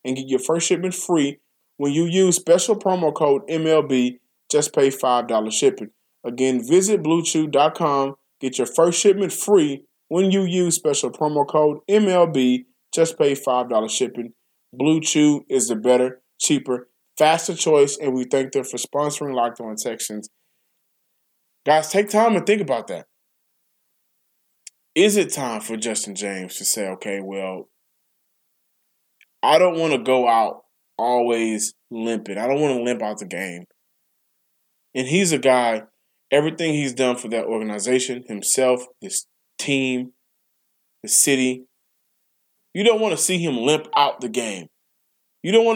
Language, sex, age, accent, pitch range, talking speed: English, male, 20-39, American, 125-165 Hz, 150 wpm